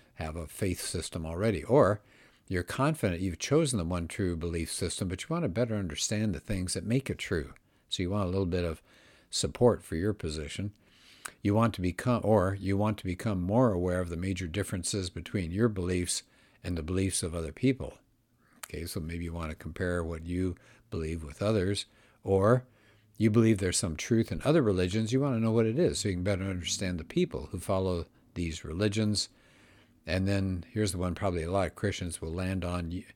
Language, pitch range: English, 85-110 Hz